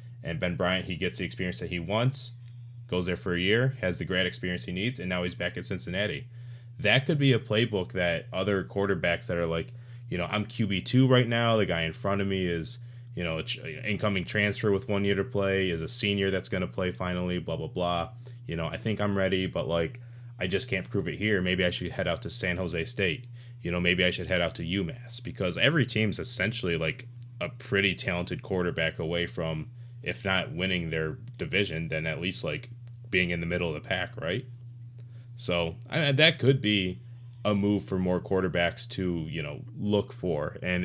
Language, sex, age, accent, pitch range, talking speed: English, male, 20-39, American, 90-120 Hz, 215 wpm